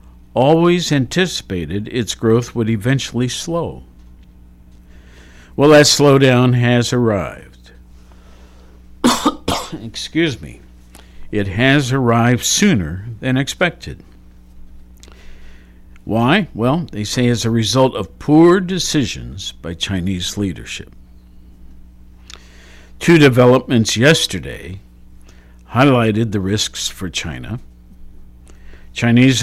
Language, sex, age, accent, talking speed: English, male, 60-79, American, 85 wpm